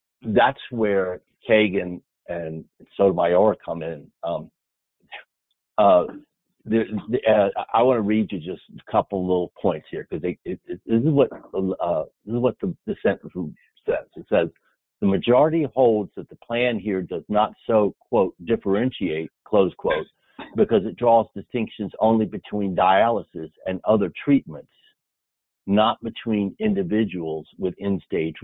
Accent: American